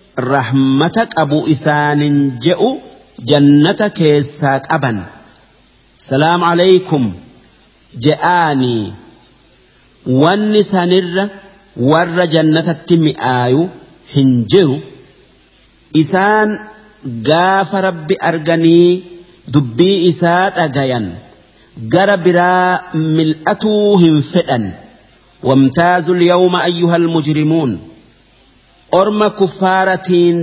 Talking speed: 65 wpm